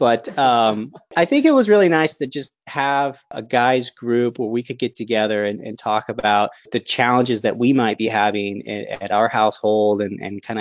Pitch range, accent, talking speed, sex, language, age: 100-115 Hz, American, 210 wpm, male, English, 30-49